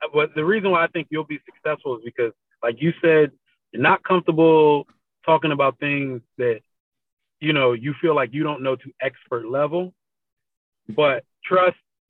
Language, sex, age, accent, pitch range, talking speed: English, male, 30-49, American, 145-185 Hz, 170 wpm